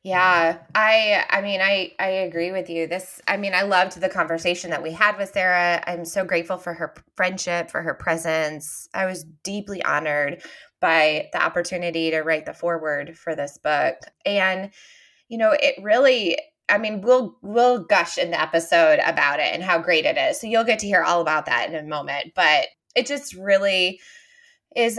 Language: English